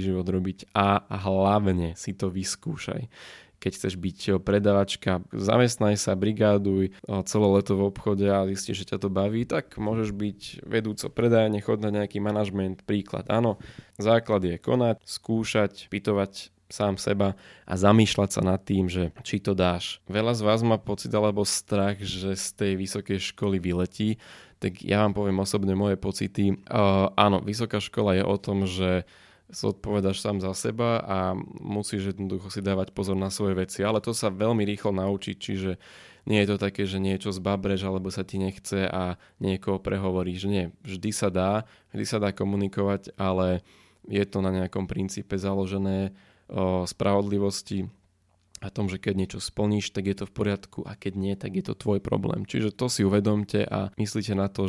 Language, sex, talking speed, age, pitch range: Slovak, male, 170 wpm, 20-39, 95-105 Hz